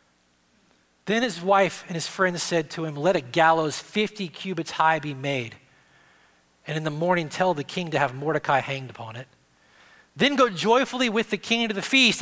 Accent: American